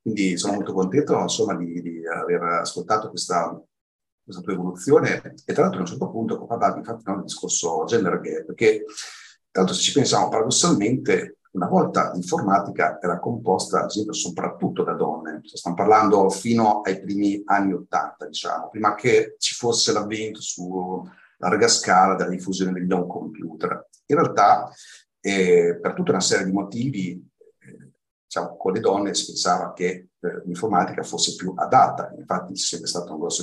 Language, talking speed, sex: Italian, 160 wpm, male